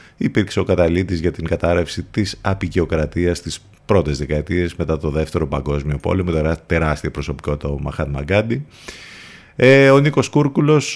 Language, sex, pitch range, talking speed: Greek, male, 80-115 Hz, 135 wpm